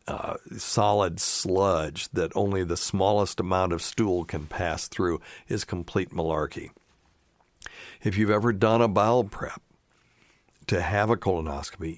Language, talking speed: English, 130 wpm